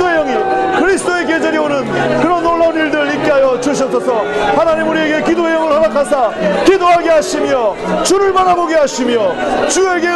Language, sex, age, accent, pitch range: Korean, male, 40-59, native, 270-345 Hz